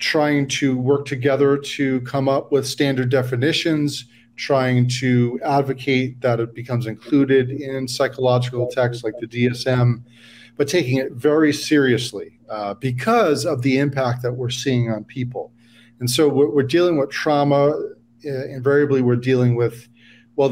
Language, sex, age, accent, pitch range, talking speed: English, male, 40-59, American, 120-140 Hz, 145 wpm